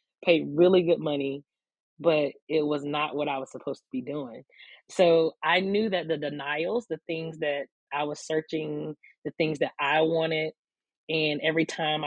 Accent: American